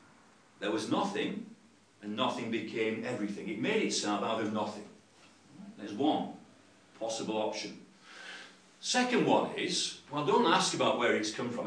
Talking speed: 145 wpm